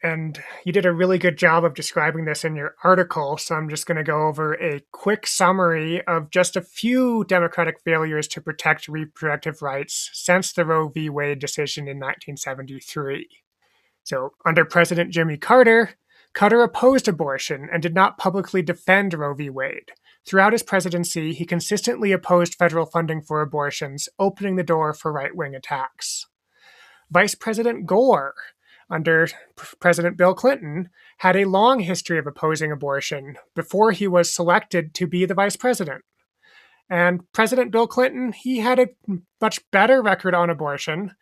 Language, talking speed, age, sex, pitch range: English, 155 wpm, 30-49, male, 160-200 Hz